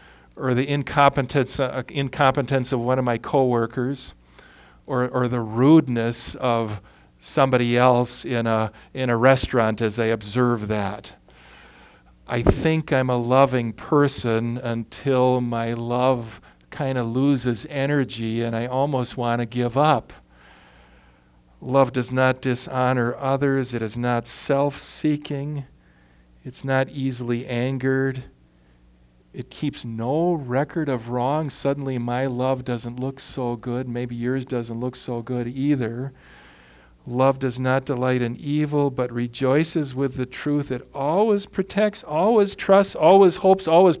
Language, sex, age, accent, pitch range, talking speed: English, male, 50-69, American, 110-140 Hz, 135 wpm